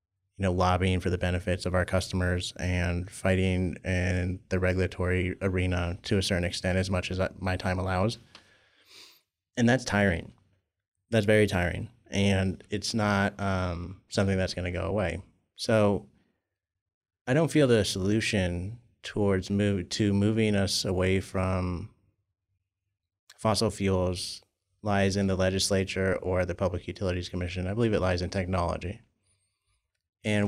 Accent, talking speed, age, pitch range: American, 140 wpm, 30-49, 90-100 Hz